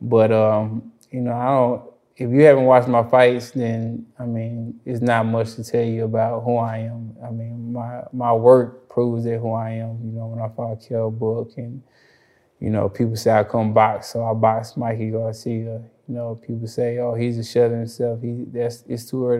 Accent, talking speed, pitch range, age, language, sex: American, 205 wpm, 115-120 Hz, 20-39, English, male